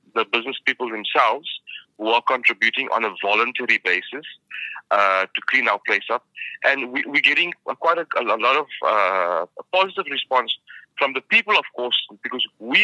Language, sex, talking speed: English, male, 180 wpm